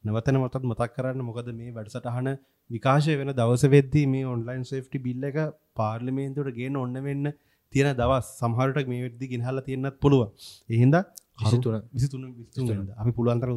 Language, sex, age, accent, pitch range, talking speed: English, male, 30-49, Indian, 115-135 Hz, 145 wpm